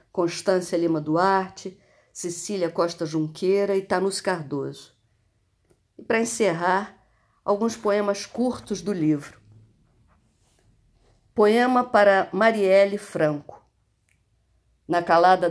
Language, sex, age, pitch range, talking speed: Portuguese, female, 50-69, 150-205 Hz, 90 wpm